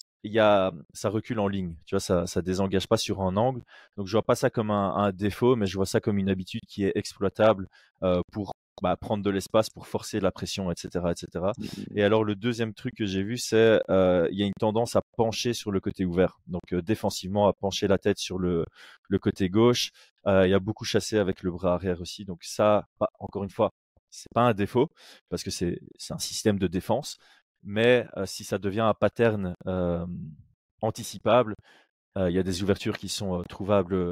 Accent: French